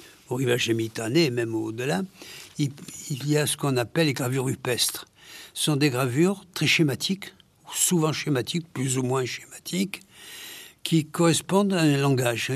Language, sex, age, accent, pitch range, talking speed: French, male, 60-79, French, 135-165 Hz, 155 wpm